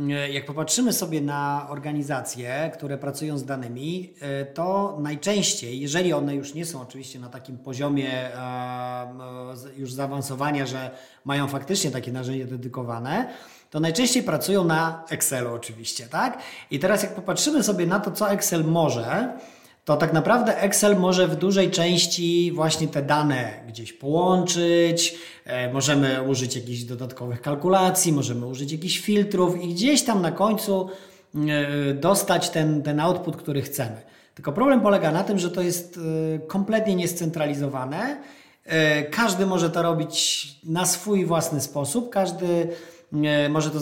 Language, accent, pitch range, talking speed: Polish, native, 140-180 Hz, 135 wpm